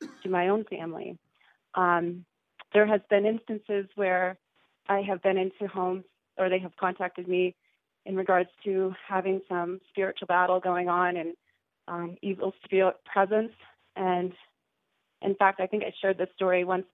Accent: American